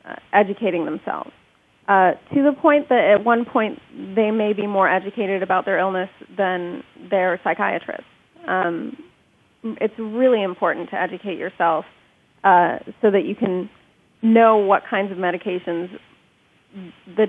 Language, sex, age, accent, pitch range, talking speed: English, female, 30-49, American, 195-240 Hz, 140 wpm